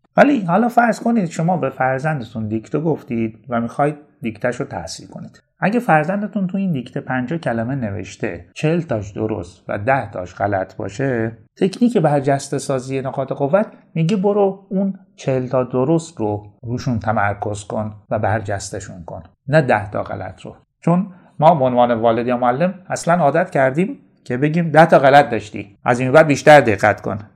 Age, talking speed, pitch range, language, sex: 30-49, 165 wpm, 115-165 Hz, Persian, male